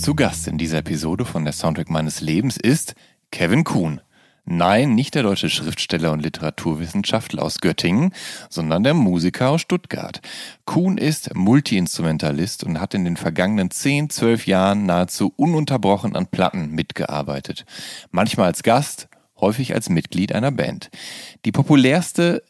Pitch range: 90-145 Hz